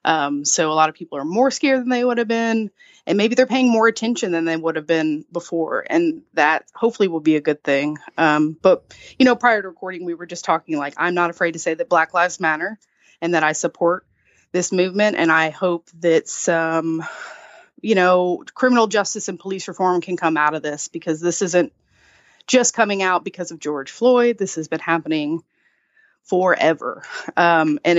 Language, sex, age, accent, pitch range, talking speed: English, female, 30-49, American, 160-200 Hz, 205 wpm